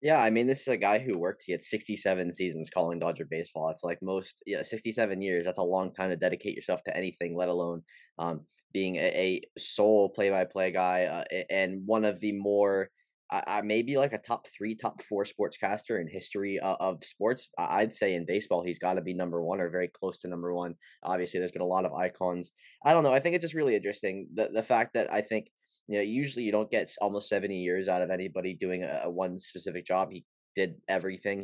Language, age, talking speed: English, 10-29, 225 wpm